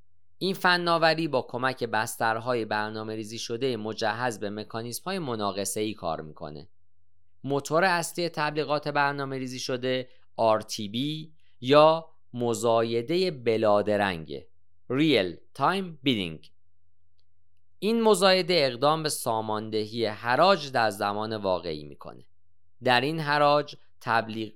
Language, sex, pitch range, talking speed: Persian, male, 100-150 Hz, 100 wpm